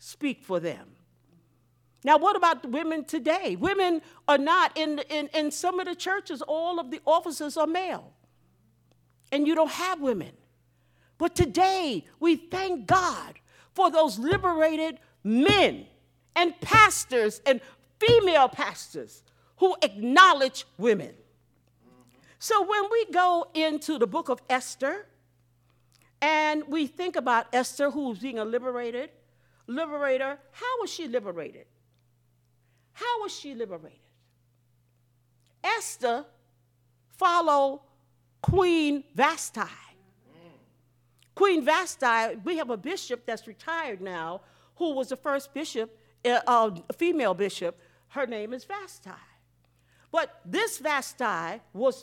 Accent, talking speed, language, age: American, 120 wpm, English, 50-69